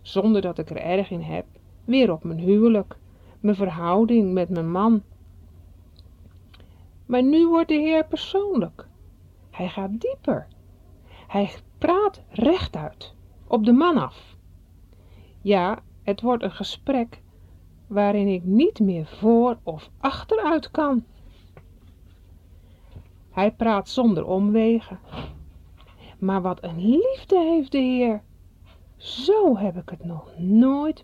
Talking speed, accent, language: 120 wpm, Dutch, Dutch